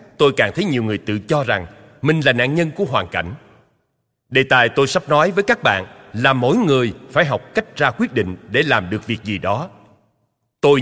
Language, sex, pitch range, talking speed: Vietnamese, male, 115-155 Hz, 215 wpm